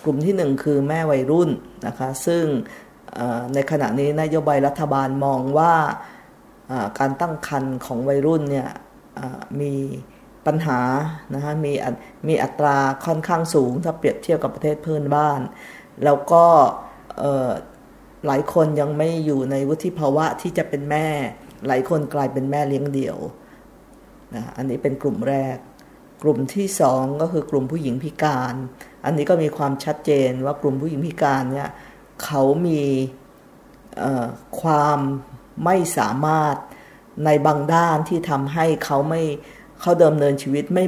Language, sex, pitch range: Thai, female, 135-155 Hz